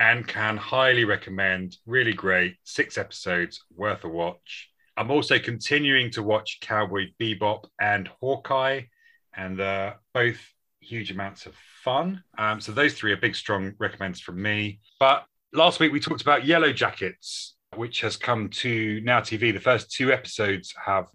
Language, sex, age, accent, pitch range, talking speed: English, male, 30-49, British, 95-115 Hz, 160 wpm